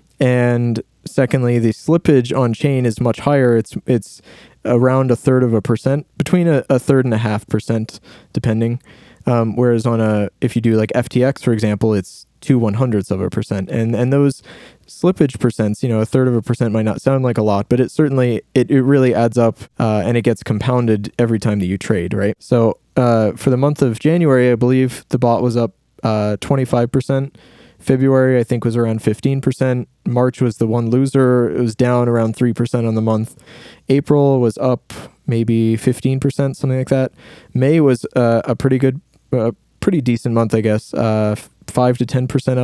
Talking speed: 195 wpm